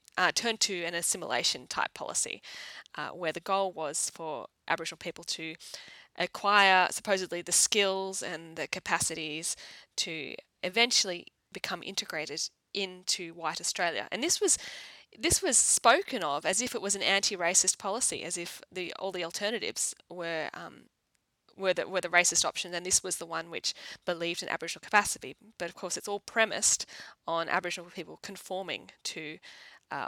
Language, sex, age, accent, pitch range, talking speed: English, female, 10-29, Australian, 165-200 Hz, 160 wpm